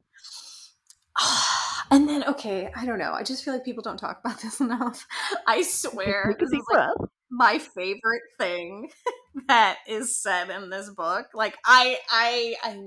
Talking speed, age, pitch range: 160 wpm, 20-39, 195-260 Hz